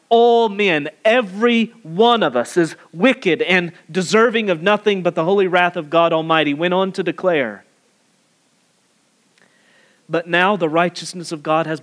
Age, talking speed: 40-59, 150 wpm